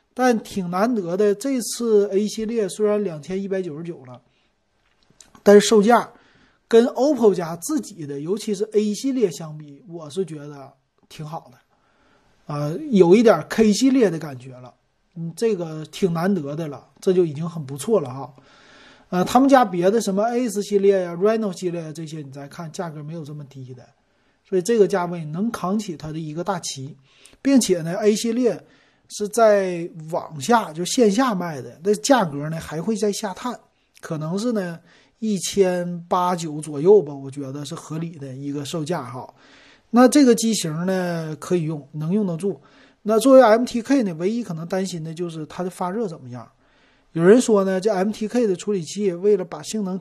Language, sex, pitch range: Chinese, male, 155-210 Hz